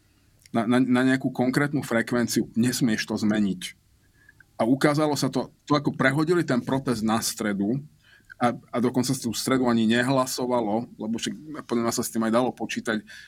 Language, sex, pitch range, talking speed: Slovak, male, 115-130 Hz, 165 wpm